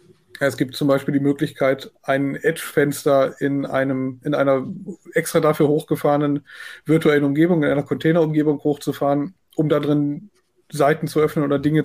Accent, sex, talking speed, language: German, male, 145 wpm, German